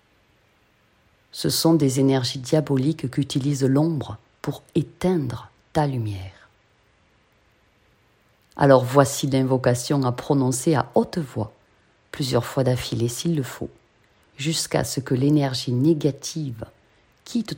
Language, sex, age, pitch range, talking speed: French, female, 40-59, 110-155 Hz, 105 wpm